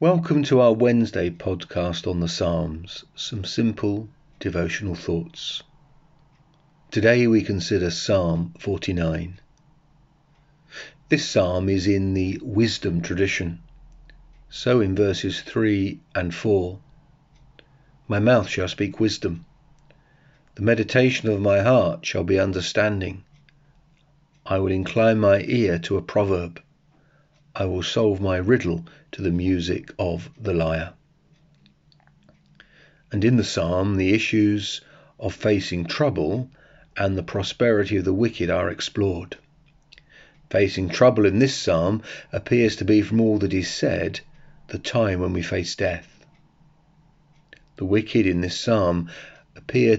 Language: English